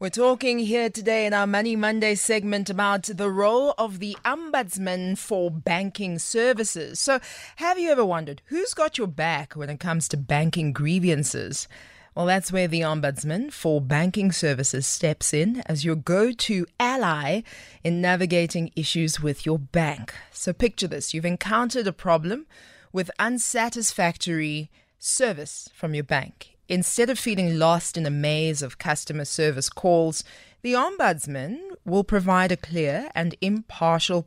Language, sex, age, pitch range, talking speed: English, female, 20-39, 150-205 Hz, 150 wpm